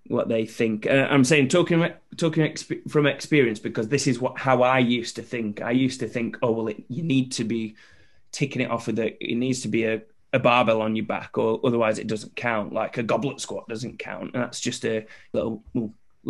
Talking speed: 230 wpm